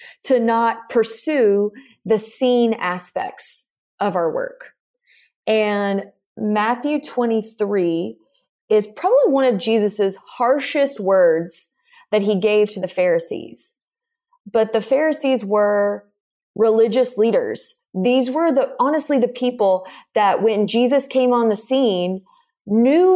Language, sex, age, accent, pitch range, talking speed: English, female, 30-49, American, 200-275 Hz, 115 wpm